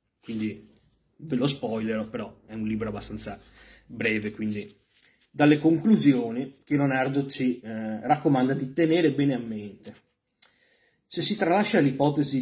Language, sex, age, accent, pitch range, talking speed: Italian, male, 30-49, native, 110-140 Hz, 130 wpm